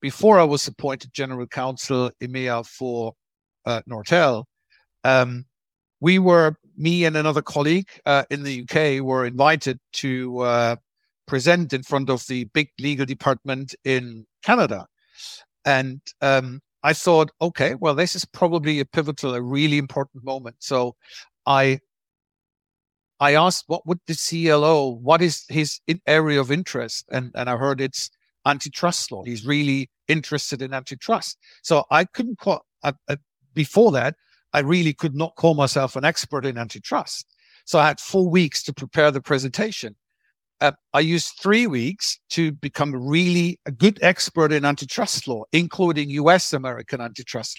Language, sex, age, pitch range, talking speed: English, male, 60-79, 130-165 Hz, 150 wpm